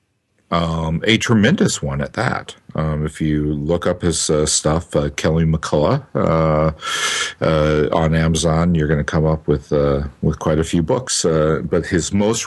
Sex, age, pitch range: male, 50-69, 80-105 Hz